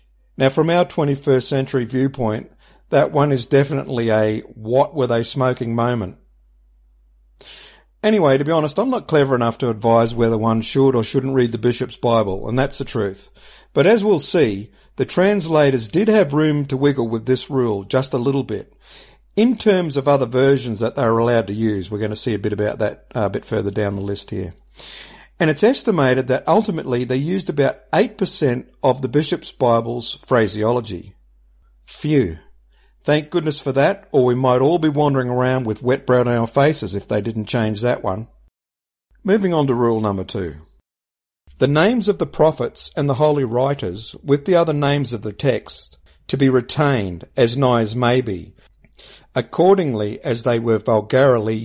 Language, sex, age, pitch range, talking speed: English, male, 50-69, 110-145 Hz, 180 wpm